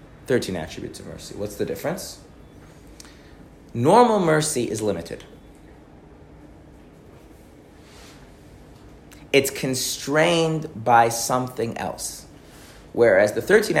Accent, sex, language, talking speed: American, male, English, 85 wpm